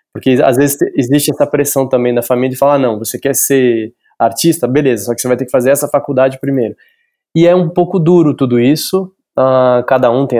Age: 20-39